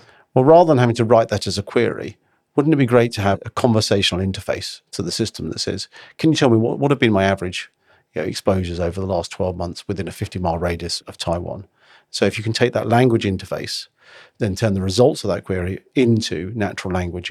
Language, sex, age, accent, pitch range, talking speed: English, male, 40-59, British, 95-115 Hz, 225 wpm